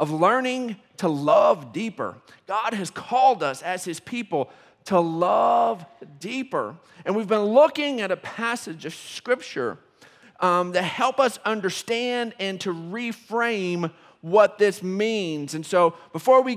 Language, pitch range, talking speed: English, 180-235 Hz, 140 wpm